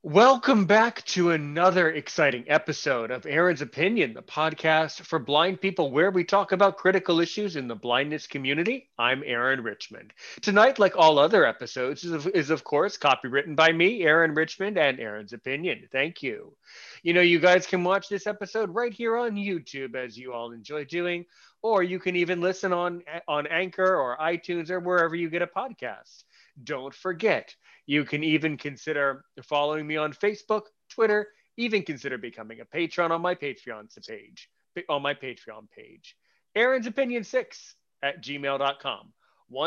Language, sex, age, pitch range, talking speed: English, male, 30-49, 150-195 Hz, 165 wpm